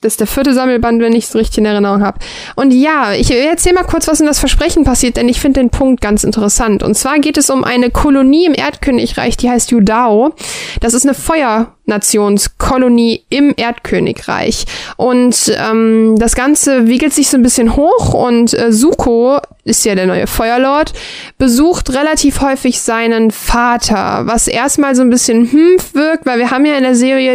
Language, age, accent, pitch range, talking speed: German, 10-29, German, 225-270 Hz, 185 wpm